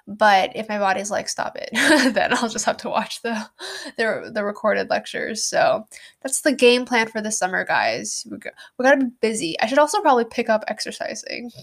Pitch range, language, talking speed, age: 210-275 Hz, English, 210 wpm, 10-29